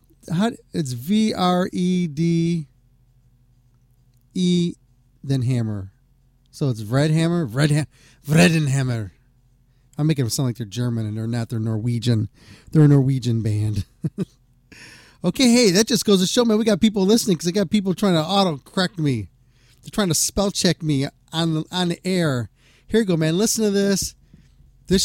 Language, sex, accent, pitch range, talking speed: English, male, American, 125-175 Hz, 165 wpm